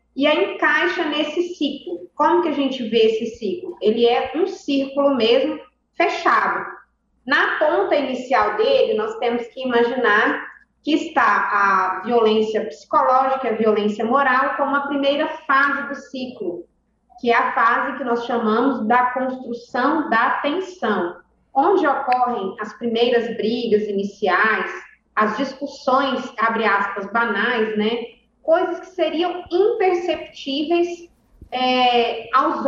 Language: Portuguese